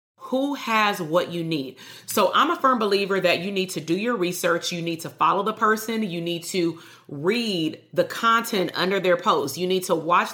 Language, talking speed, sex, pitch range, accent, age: English, 210 wpm, female, 170-210 Hz, American, 30-49